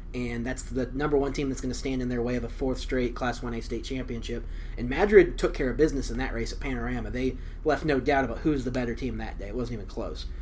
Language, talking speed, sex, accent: English, 270 wpm, male, American